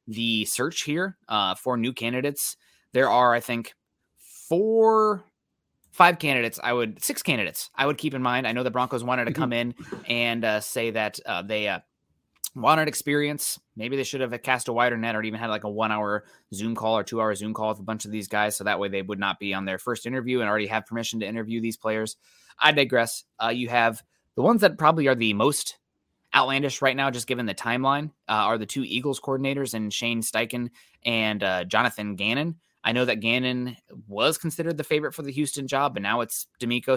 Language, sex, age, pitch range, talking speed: English, male, 20-39, 110-130 Hz, 215 wpm